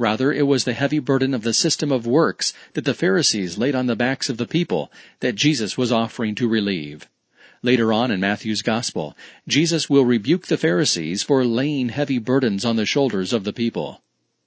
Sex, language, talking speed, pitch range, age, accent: male, English, 195 wpm, 120-145 Hz, 40-59, American